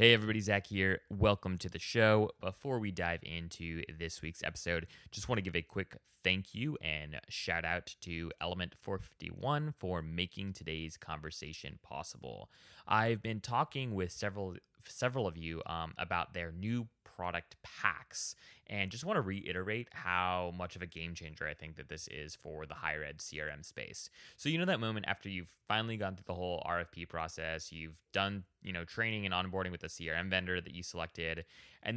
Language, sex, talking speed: English, male, 190 wpm